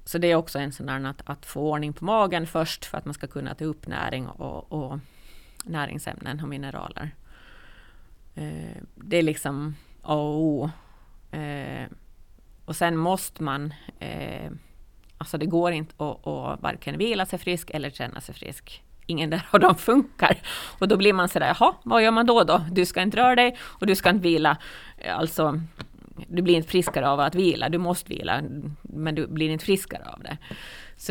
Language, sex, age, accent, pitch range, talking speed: Swedish, female, 30-49, native, 150-180 Hz, 195 wpm